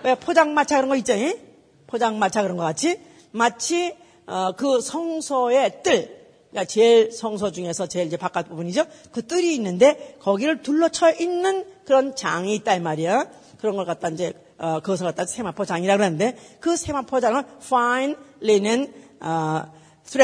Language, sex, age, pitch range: Korean, female, 40-59, 200-315 Hz